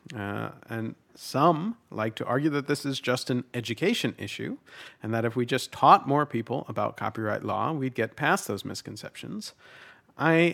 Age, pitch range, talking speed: 40-59, 110-135 Hz, 170 wpm